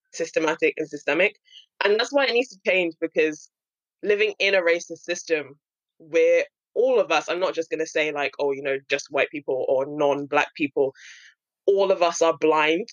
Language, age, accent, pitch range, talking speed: English, 20-39, British, 150-235 Hz, 190 wpm